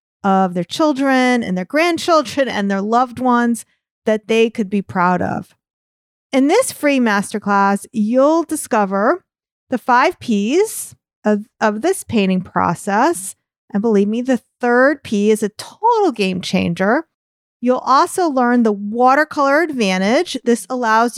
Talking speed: 140 wpm